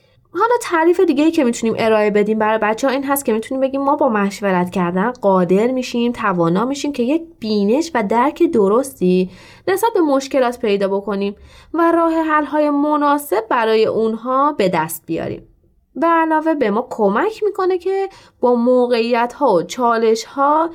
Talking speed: 155 wpm